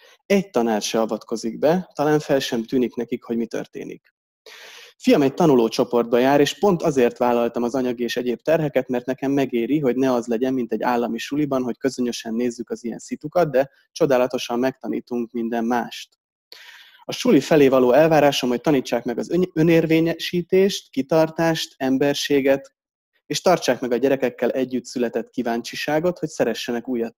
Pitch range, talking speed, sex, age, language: 120-155 Hz, 155 wpm, male, 30-49, Hungarian